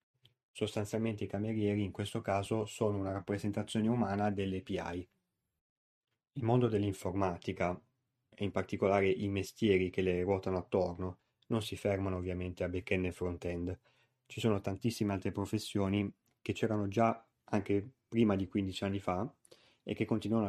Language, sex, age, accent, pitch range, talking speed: Italian, male, 20-39, native, 95-110 Hz, 145 wpm